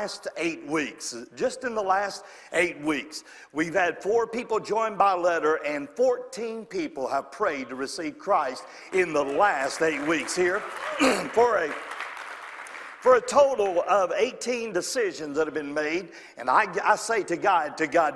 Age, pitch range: 50-69, 165-230 Hz